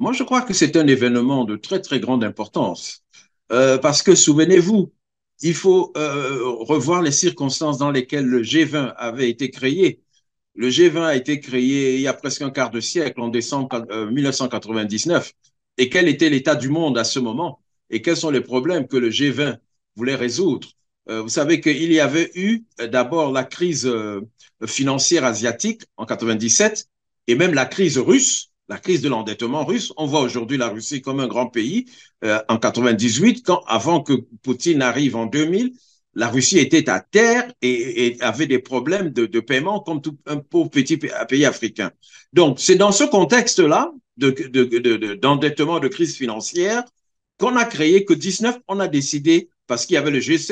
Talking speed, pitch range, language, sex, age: 180 wpm, 125-185 Hz, French, male, 50-69